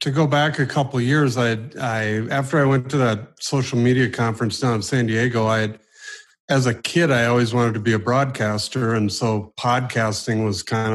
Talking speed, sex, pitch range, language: 210 wpm, male, 110-130 Hz, English